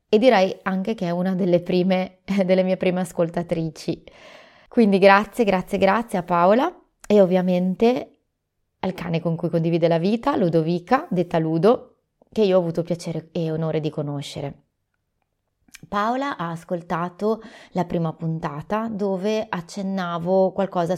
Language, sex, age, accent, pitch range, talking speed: Italian, female, 20-39, native, 165-210 Hz, 135 wpm